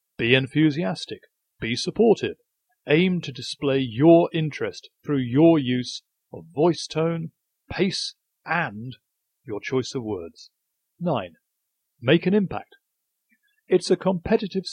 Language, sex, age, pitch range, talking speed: English, male, 40-59, 130-180 Hz, 115 wpm